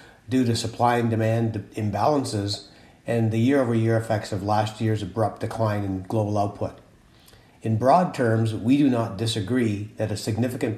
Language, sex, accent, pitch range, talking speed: English, male, American, 105-120 Hz, 155 wpm